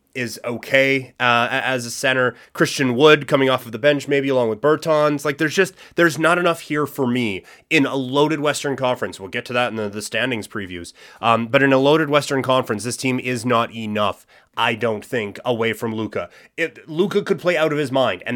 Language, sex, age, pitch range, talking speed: English, male, 30-49, 115-140 Hz, 215 wpm